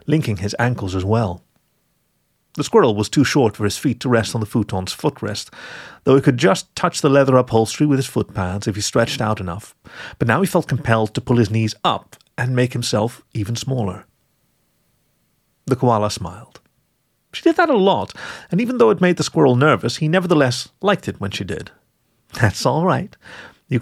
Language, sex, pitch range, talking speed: English, male, 105-135 Hz, 195 wpm